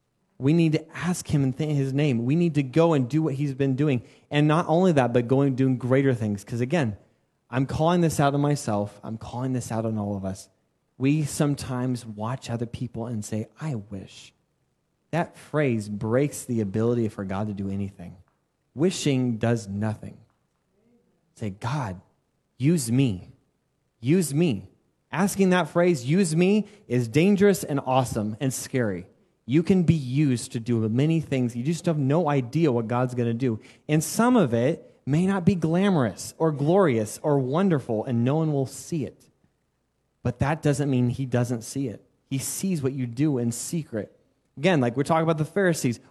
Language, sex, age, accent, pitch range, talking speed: English, male, 30-49, American, 120-160 Hz, 185 wpm